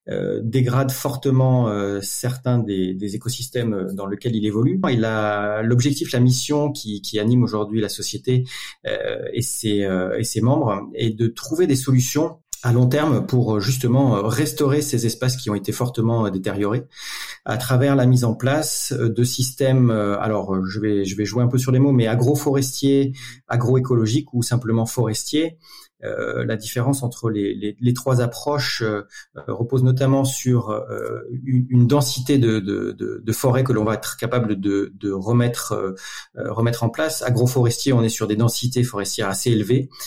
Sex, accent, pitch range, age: male, French, 105-130 Hz, 30-49